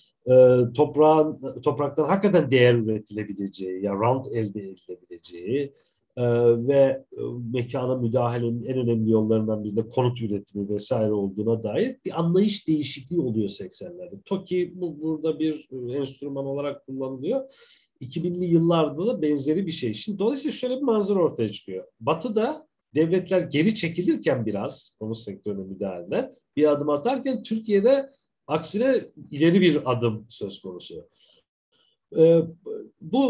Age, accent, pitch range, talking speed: 50-69, native, 115-180 Hz, 120 wpm